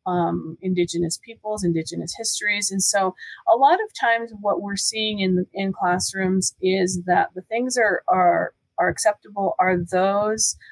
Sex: female